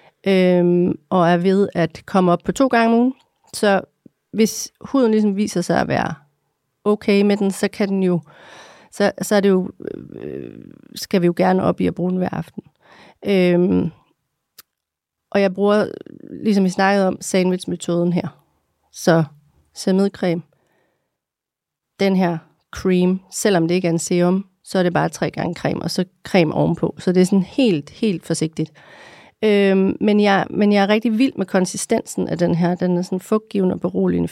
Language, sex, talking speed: Danish, female, 180 wpm